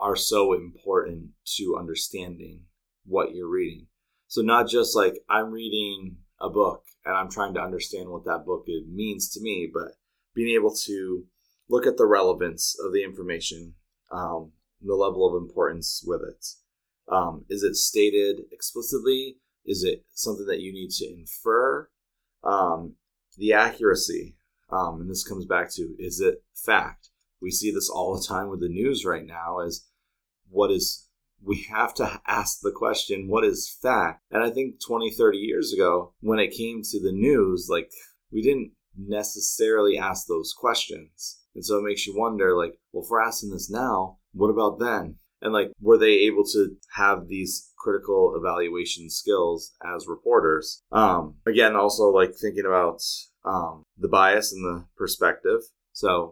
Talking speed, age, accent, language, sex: 165 wpm, 20-39, American, English, male